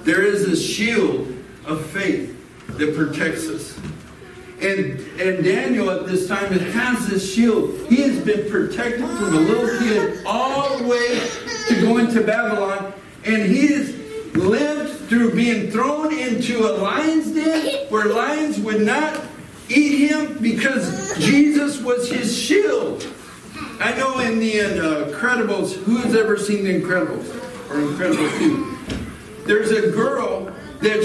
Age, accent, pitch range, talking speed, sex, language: 60-79, American, 195-255 Hz, 145 wpm, male, English